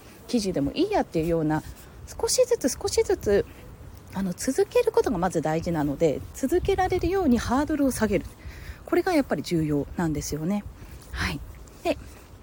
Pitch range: 195-295 Hz